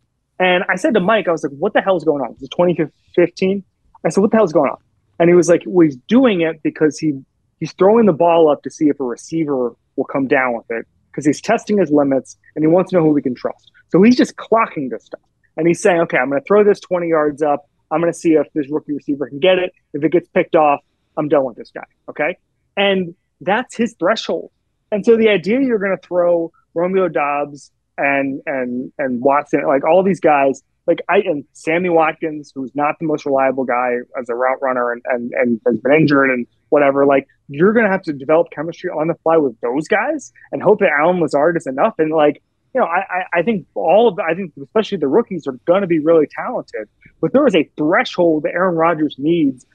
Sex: male